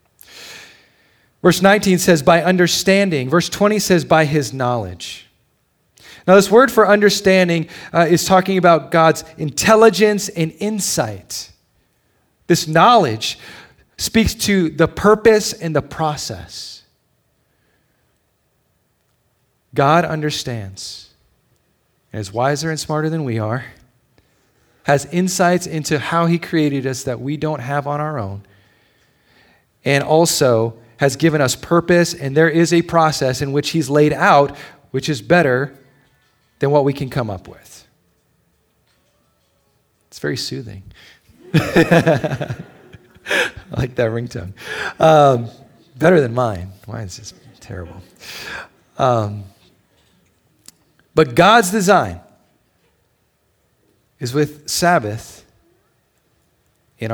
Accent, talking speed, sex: American, 110 wpm, male